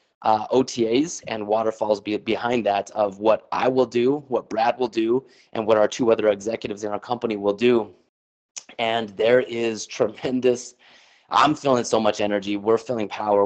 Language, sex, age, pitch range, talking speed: English, male, 30-49, 105-120 Hz, 170 wpm